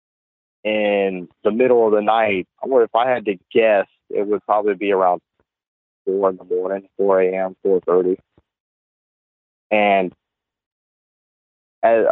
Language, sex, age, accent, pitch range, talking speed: English, male, 30-49, American, 95-130 Hz, 140 wpm